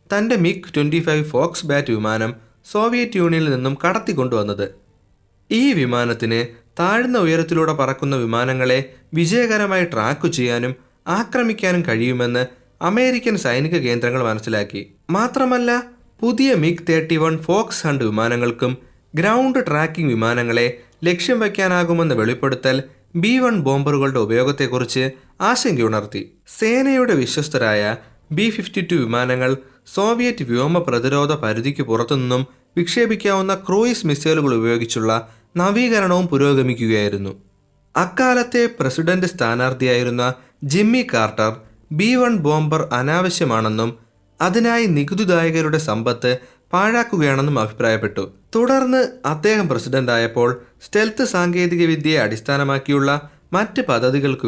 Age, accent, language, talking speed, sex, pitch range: 20-39, native, Malayalam, 85 wpm, male, 120-185 Hz